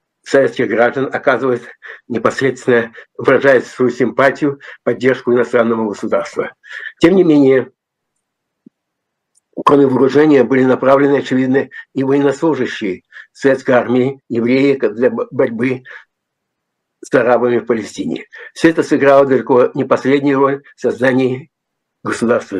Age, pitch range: 60-79, 125-145 Hz